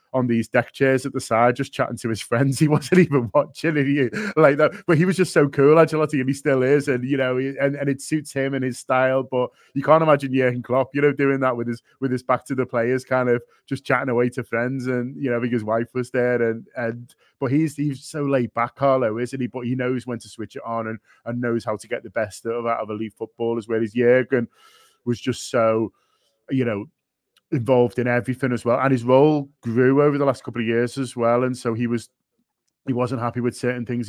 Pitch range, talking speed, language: 115-135 Hz, 250 wpm, English